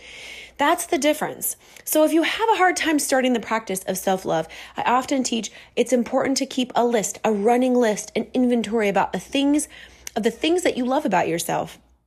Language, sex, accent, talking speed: English, female, American, 200 wpm